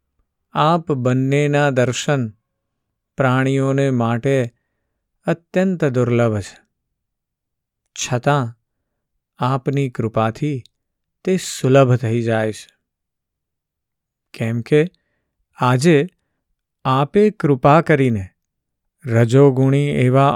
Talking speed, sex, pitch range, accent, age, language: 70 wpm, male, 115-145 Hz, native, 50-69, Gujarati